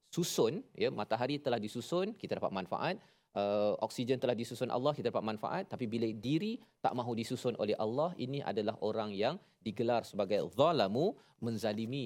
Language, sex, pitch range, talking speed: Malayalam, male, 105-135 Hz, 160 wpm